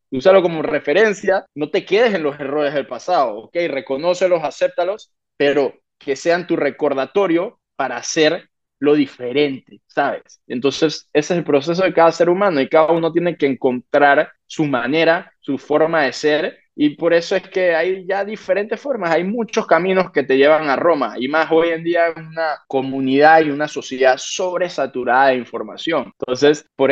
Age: 20-39